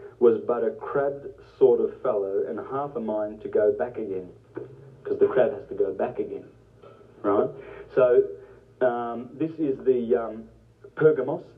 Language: English